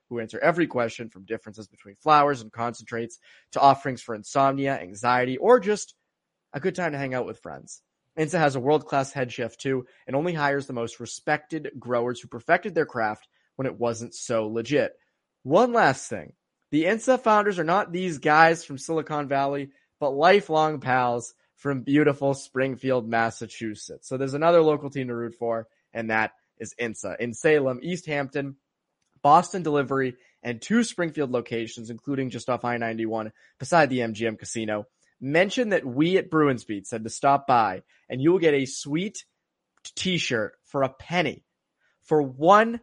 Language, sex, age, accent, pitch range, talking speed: English, male, 20-39, American, 120-155 Hz, 165 wpm